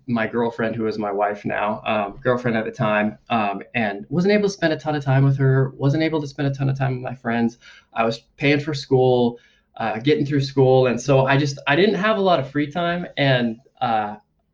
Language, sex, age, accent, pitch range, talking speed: English, male, 20-39, American, 110-135 Hz, 240 wpm